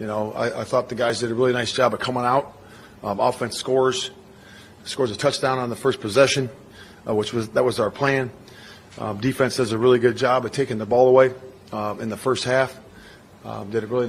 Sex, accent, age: male, American, 40-59